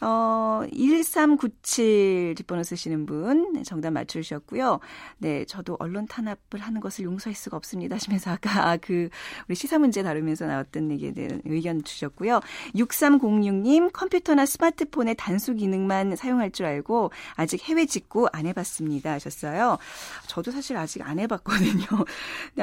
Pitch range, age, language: 175-260 Hz, 40-59, Korean